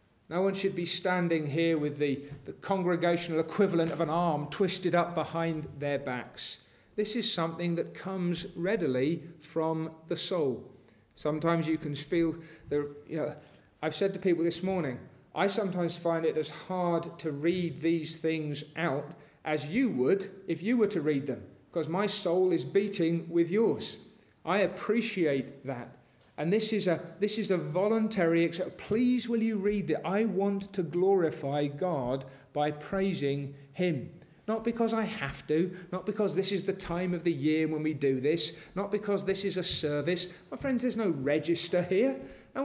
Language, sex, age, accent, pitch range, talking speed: English, male, 40-59, British, 150-195 Hz, 170 wpm